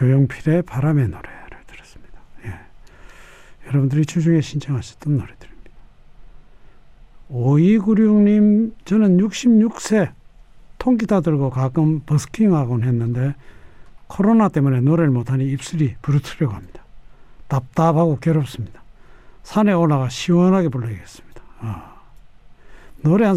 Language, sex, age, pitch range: Korean, male, 60-79, 120-170 Hz